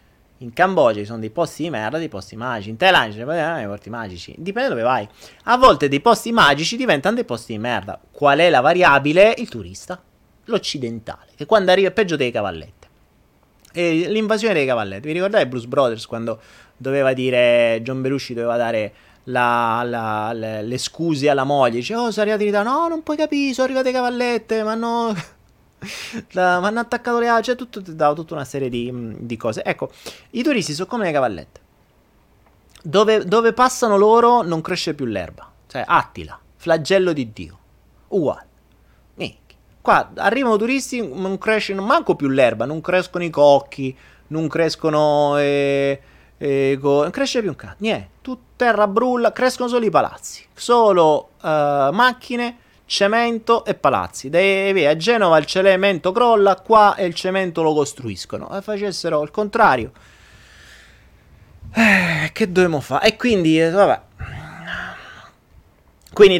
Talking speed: 155 wpm